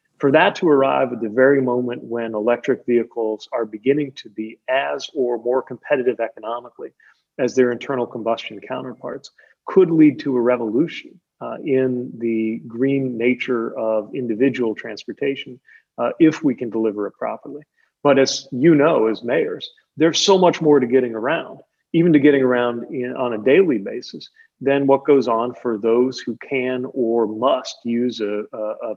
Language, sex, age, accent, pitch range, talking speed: English, male, 40-59, American, 115-135 Hz, 165 wpm